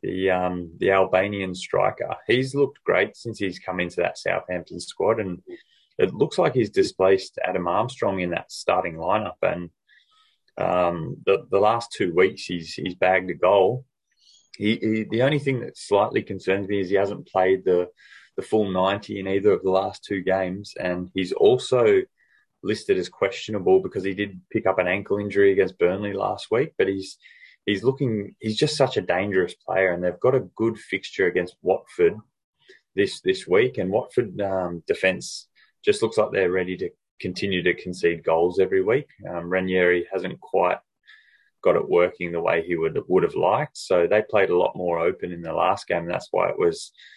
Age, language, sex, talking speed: 20-39, English, male, 190 wpm